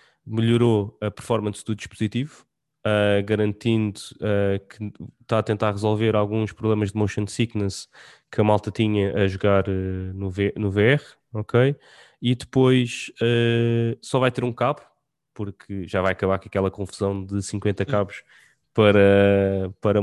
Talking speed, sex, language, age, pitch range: 150 wpm, male, English, 20-39, 100-115 Hz